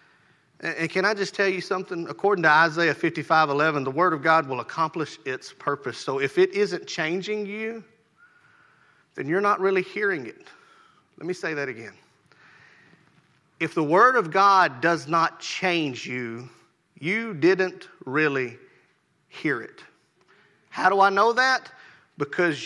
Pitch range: 155-200 Hz